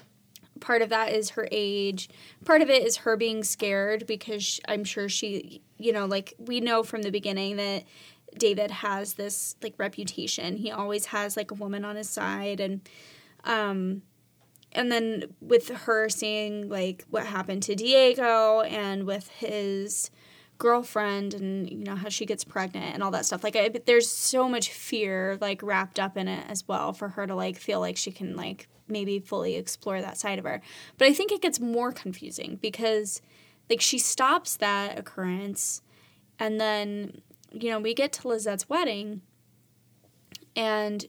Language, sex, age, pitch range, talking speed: English, female, 20-39, 200-235 Hz, 175 wpm